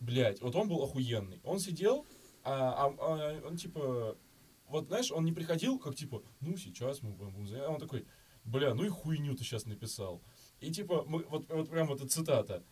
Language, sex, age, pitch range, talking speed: Russian, male, 20-39, 110-155 Hz, 205 wpm